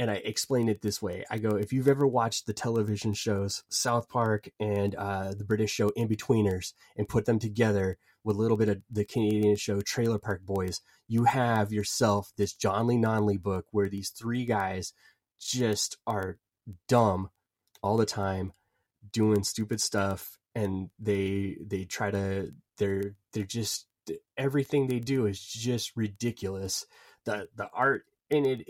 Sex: male